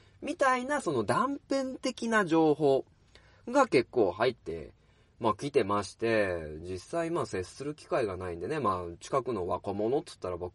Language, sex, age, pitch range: Japanese, male, 20-39, 95-150 Hz